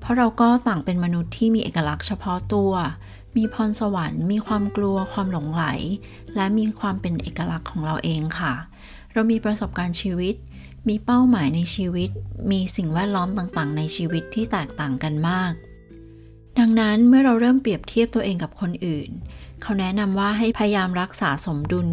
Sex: female